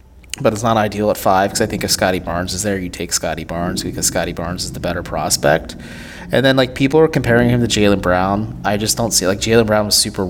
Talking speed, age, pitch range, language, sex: 260 wpm, 20-39, 90-110 Hz, English, male